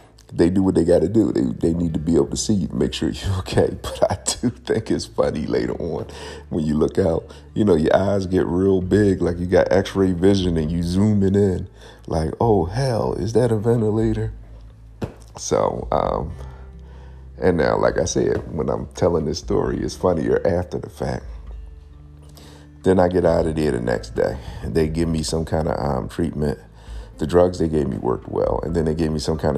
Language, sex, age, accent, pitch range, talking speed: English, male, 50-69, American, 75-95 Hz, 215 wpm